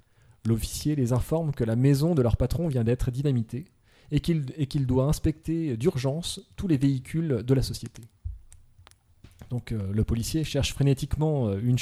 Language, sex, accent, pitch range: French, male, French, 110-145 Hz